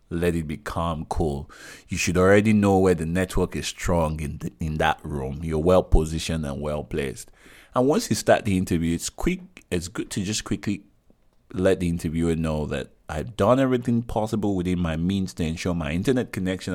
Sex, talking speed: male, 195 wpm